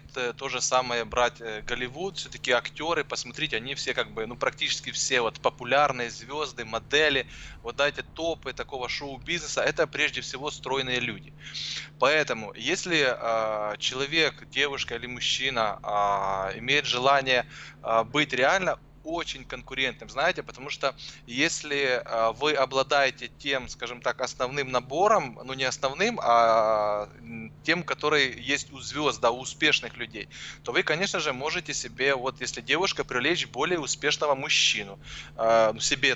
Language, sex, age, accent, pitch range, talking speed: Russian, male, 20-39, native, 120-145 Hz, 135 wpm